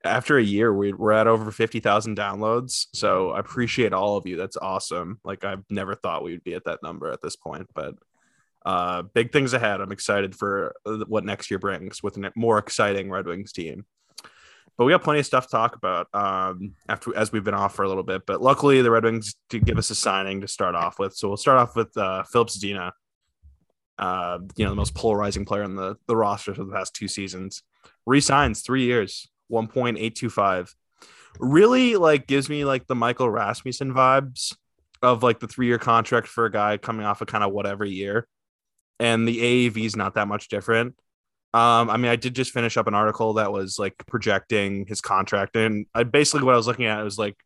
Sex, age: male, 20-39